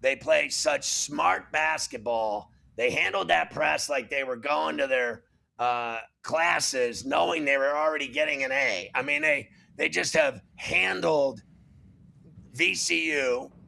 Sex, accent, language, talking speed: male, American, English, 140 wpm